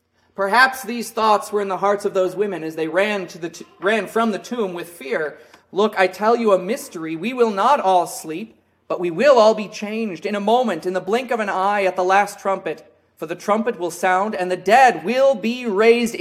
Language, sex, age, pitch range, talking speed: English, male, 30-49, 170-225 Hz, 235 wpm